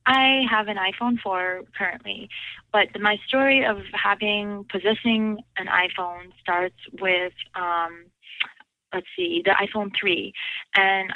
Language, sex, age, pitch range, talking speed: English, female, 20-39, 180-220 Hz, 125 wpm